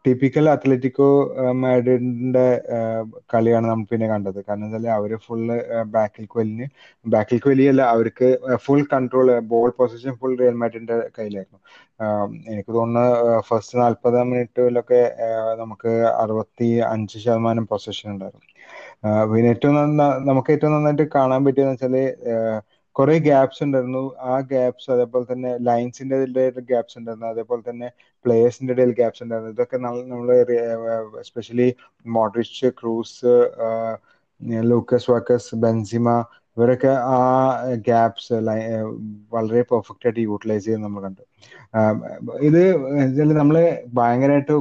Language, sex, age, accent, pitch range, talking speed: Malayalam, male, 30-49, native, 115-130 Hz, 100 wpm